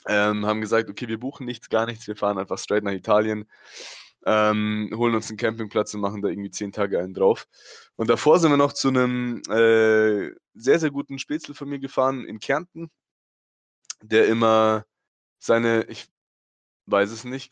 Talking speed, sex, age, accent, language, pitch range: 180 wpm, male, 20-39, German, German, 105-125 Hz